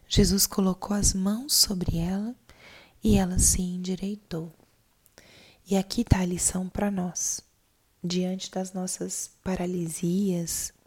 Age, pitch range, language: 20-39, 160-190 Hz, Portuguese